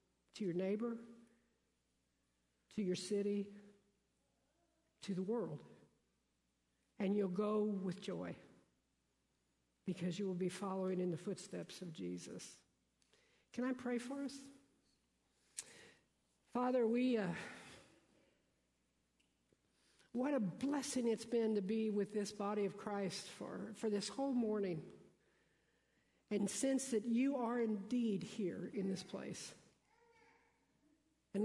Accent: American